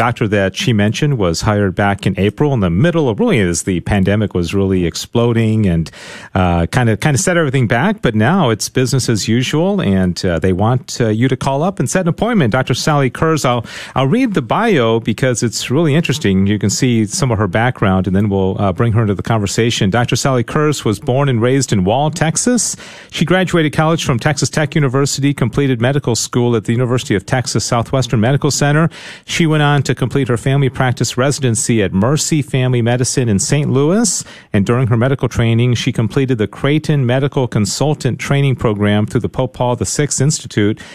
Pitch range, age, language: 110-140 Hz, 40-59, English